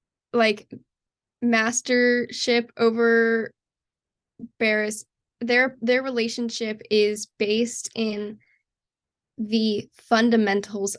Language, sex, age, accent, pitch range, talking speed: English, female, 10-29, American, 215-255 Hz, 65 wpm